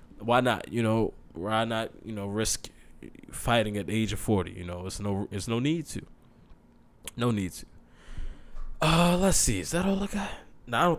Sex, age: male, 20-39